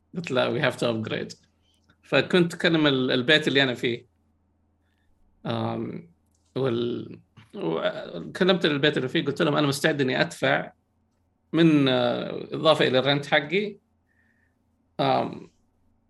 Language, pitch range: Arabic, 120-150 Hz